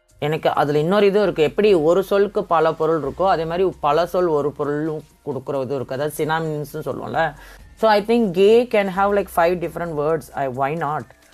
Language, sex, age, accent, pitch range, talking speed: Tamil, female, 20-39, native, 145-185 Hz, 195 wpm